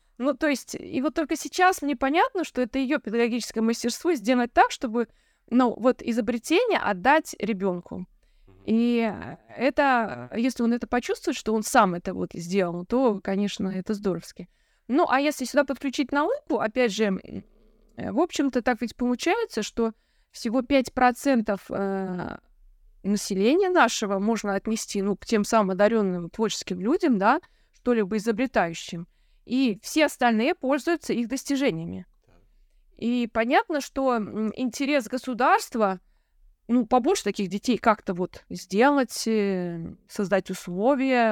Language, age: Russian, 20-39